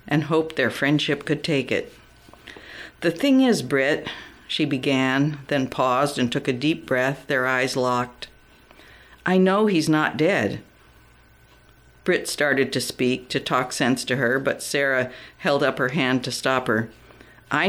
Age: 60-79